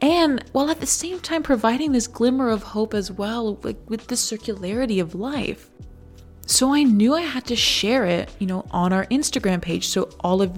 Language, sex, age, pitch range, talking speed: English, female, 20-39, 190-255 Hz, 200 wpm